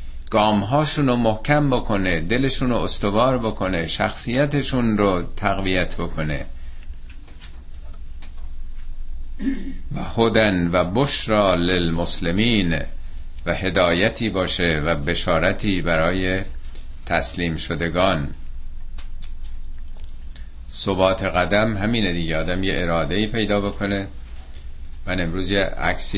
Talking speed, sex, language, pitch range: 85 wpm, male, Persian, 80-100 Hz